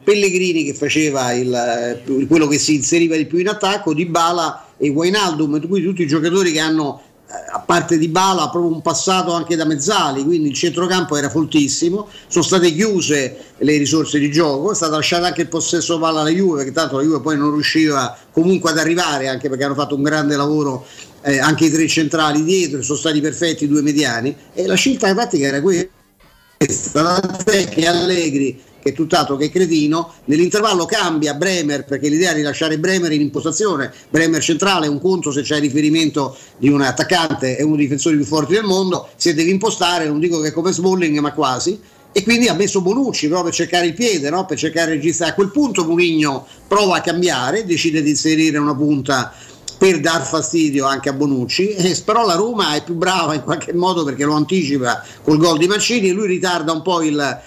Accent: native